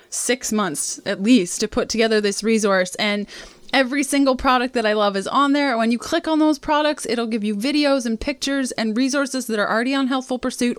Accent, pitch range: American, 210-265 Hz